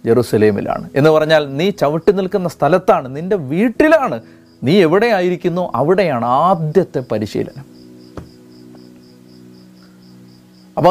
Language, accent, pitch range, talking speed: Malayalam, native, 115-175 Hz, 90 wpm